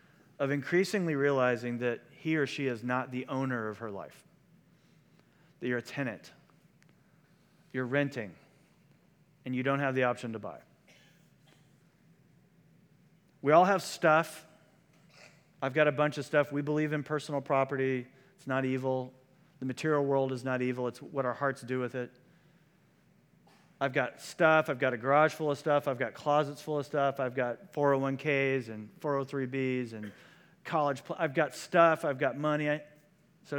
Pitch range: 140-175 Hz